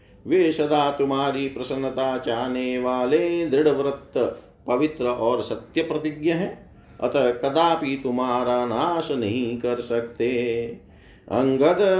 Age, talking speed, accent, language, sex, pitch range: 50-69, 100 wpm, native, Hindi, male, 125-145 Hz